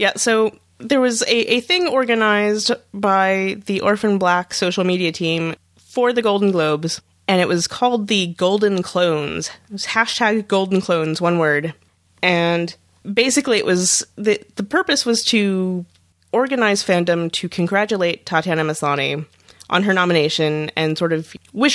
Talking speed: 150 wpm